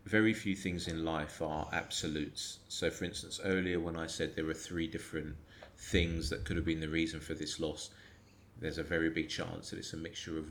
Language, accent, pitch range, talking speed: English, British, 85-110 Hz, 215 wpm